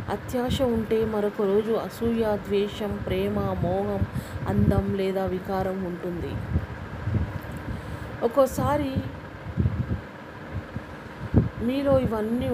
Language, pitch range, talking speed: Telugu, 145-230 Hz, 70 wpm